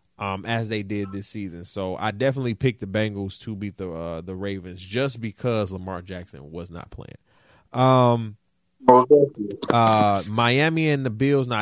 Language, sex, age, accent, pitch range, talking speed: English, male, 20-39, American, 100-135 Hz, 165 wpm